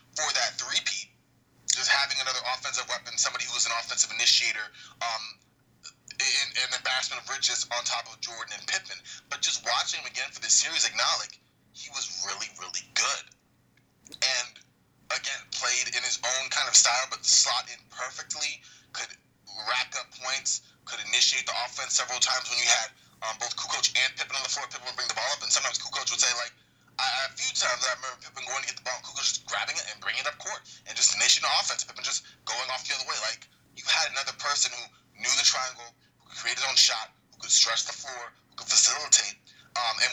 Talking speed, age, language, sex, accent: 220 wpm, 20-39, English, male, American